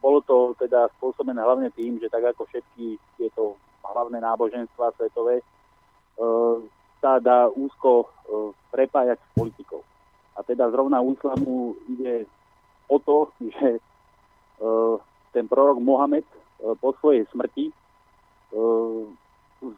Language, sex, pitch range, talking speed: Slovak, male, 115-130 Hz, 120 wpm